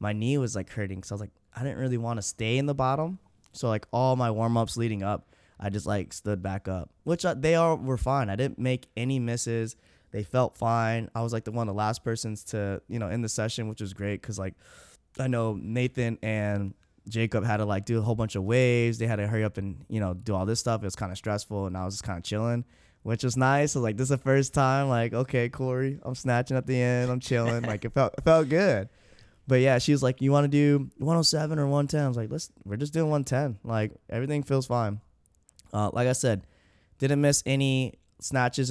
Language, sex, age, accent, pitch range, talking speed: English, male, 10-29, American, 105-130 Hz, 250 wpm